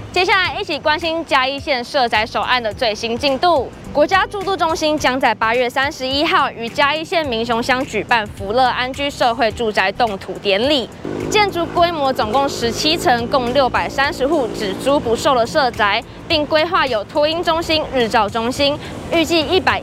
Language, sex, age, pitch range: Chinese, female, 20-39, 230-300 Hz